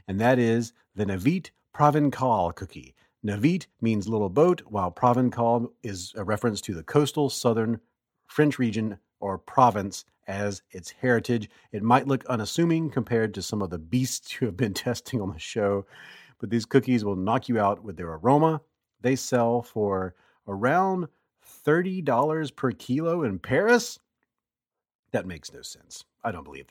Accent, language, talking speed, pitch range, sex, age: American, English, 155 wpm, 100-140 Hz, male, 40-59